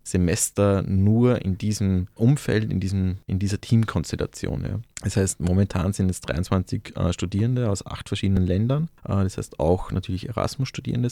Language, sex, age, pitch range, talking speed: German, male, 30-49, 90-110 Hz, 140 wpm